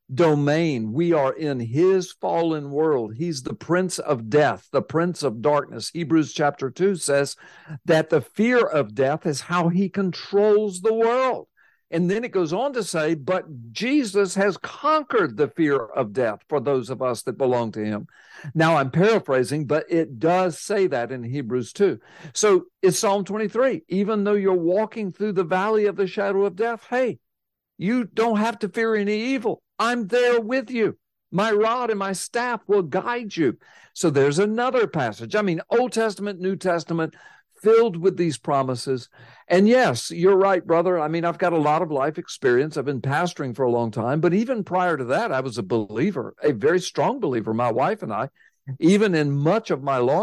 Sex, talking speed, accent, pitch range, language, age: male, 190 wpm, American, 145-210 Hz, English, 60-79